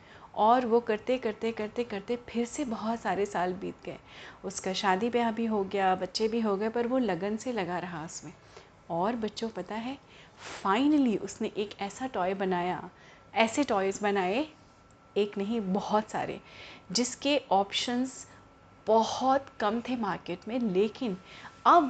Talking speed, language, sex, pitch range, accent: 155 wpm, Hindi, female, 205-275 Hz, native